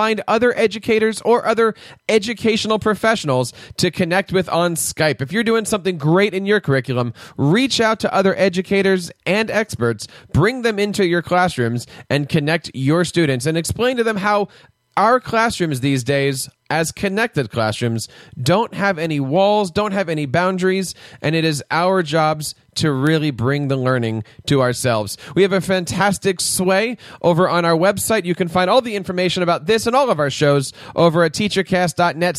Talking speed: 175 wpm